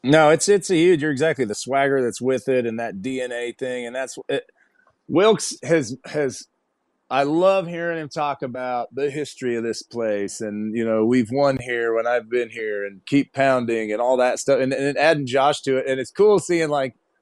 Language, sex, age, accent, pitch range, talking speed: English, male, 30-49, American, 125-160 Hz, 215 wpm